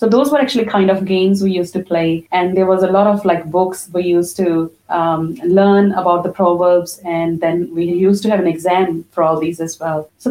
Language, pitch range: Punjabi, 175-215 Hz